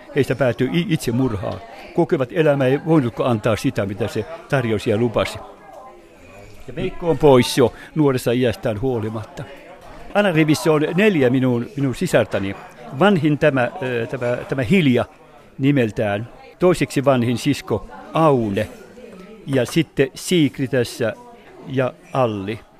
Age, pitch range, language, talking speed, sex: 60-79, 120-155 Hz, Finnish, 120 wpm, male